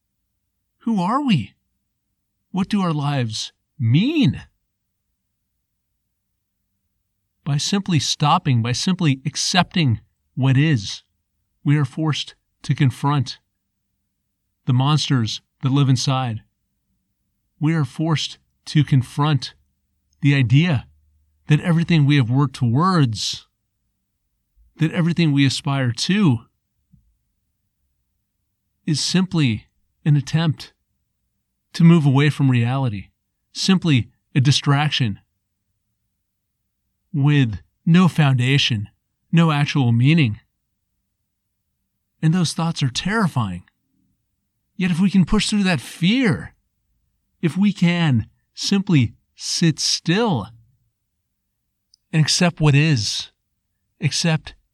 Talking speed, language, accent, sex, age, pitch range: 95 wpm, English, American, male, 40-59, 100-155 Hz